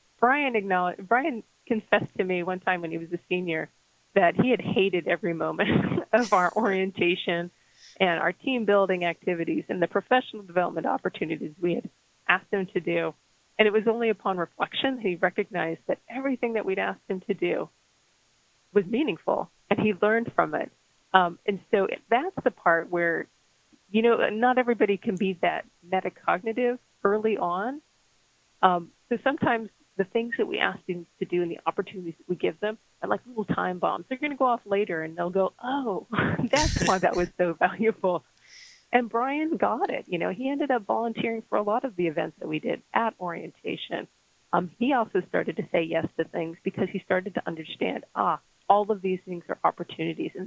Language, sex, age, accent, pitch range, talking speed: English, female, 30-49, American, 175-225 Hz, 190 wpm